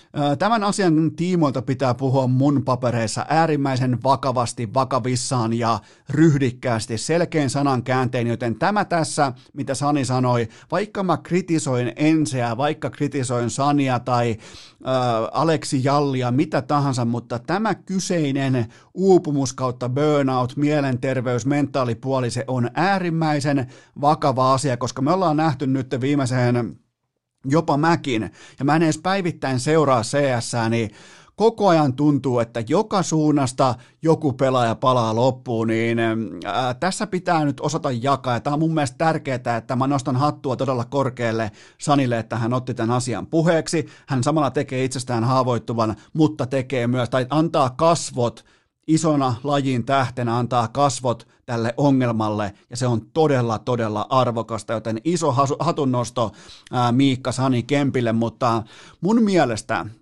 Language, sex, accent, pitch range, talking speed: Finnish, male, native, 120-150 Hz, 130 wpm